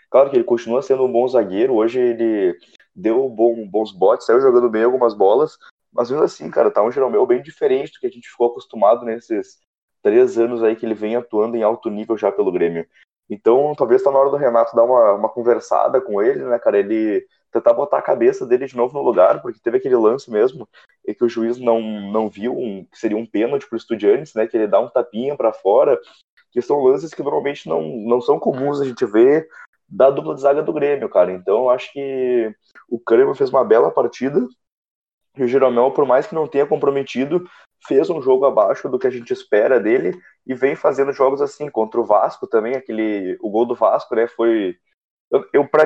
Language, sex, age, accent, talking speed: Portuguese, male, 20-39, Brazilian, 220 wpm